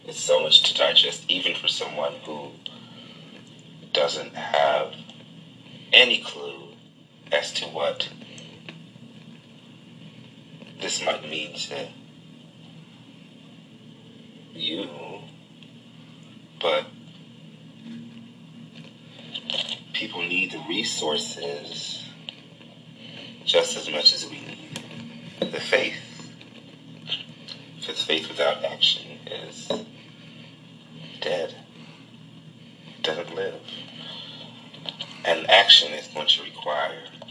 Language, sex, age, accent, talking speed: English, male, 30-49, American, 75 wpm